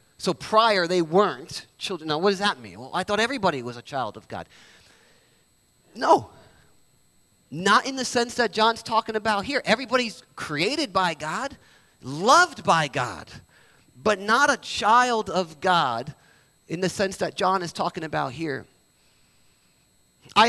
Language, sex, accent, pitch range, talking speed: English, male, American, 170-260 Hz, 150 wpm